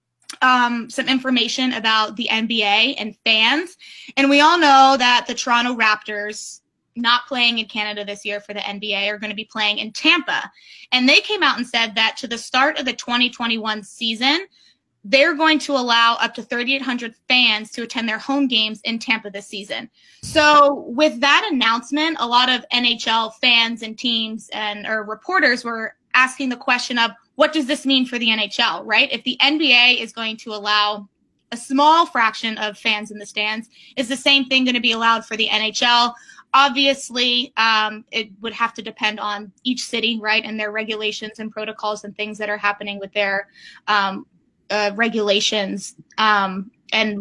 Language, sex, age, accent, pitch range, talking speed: English, female, 20-39, American, 215-260 Hz, 185 wpm